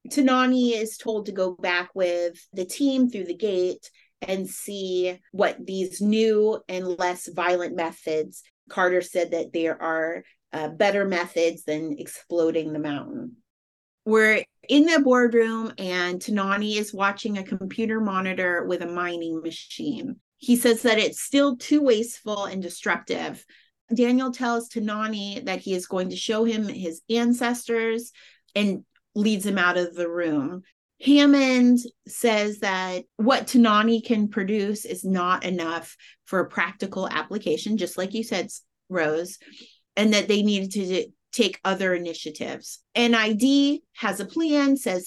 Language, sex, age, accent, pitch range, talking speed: English, female, 30-49, American, 180-230 Hz, 145 wpm